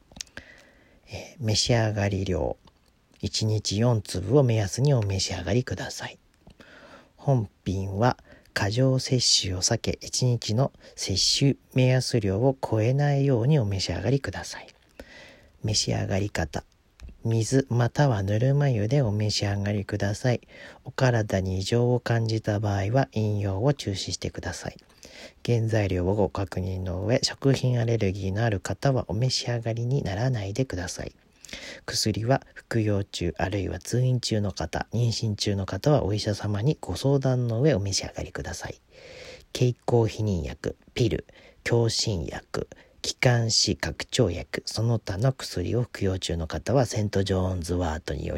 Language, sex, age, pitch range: Japanese, male, 40-59, 95-125 Hz